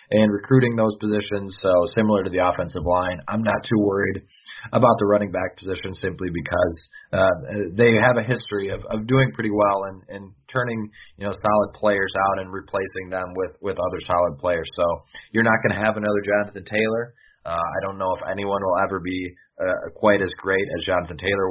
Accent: American